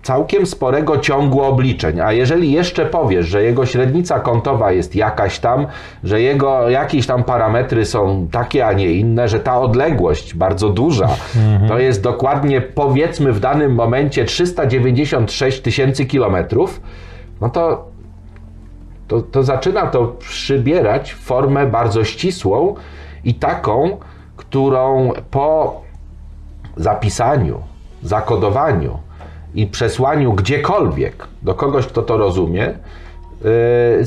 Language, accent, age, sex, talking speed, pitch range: Polish, native, 30-49, male, 115 wpm, 95-140 Hz